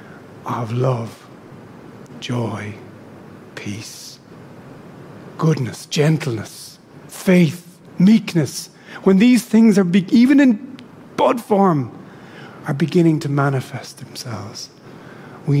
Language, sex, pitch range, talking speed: English, male, 130-185 Hz, 90 wpm